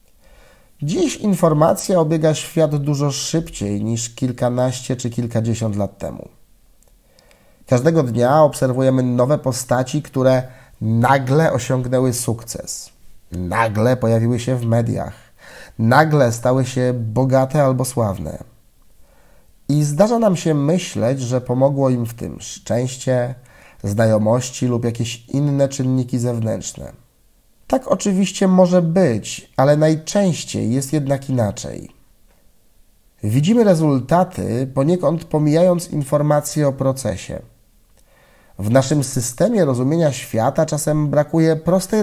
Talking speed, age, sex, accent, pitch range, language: 105 wpm, 30-49, male, native, 120-160 Hz, Polish